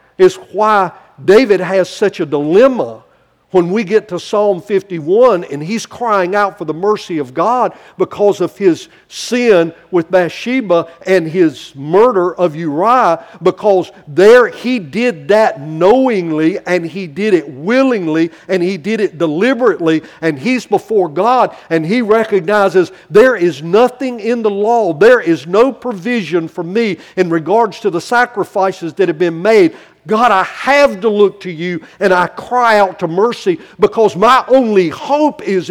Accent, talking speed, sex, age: American, 160 wpm, male, 50-69